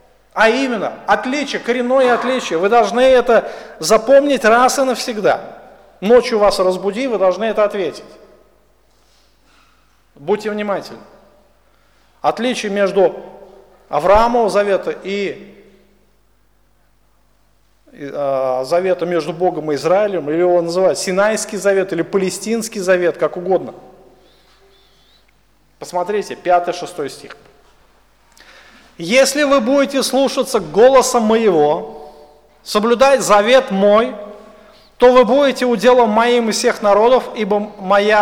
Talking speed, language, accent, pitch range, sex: 100 wpm, Russian, native, 185-240 Hz, male